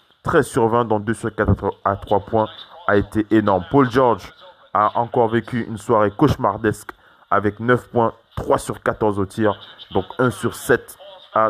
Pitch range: 105-120 Hz